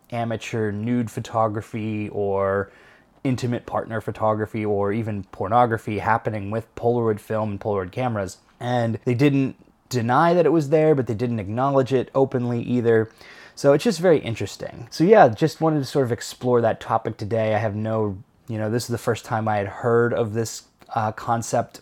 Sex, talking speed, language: male, 180 wpm, English